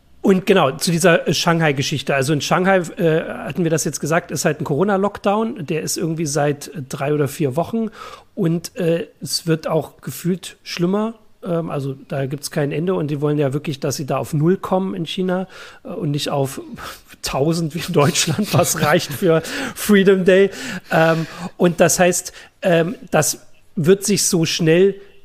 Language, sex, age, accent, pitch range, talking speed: German, male, 40-59, German, 150-180 Hz, 185 wpm